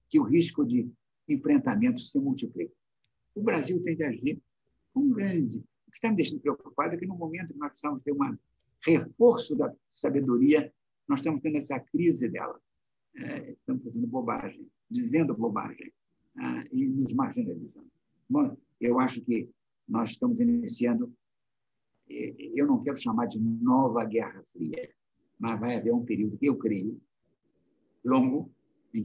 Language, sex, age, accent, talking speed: Portuguese, male, 60-79, Brazilian, 150 wpm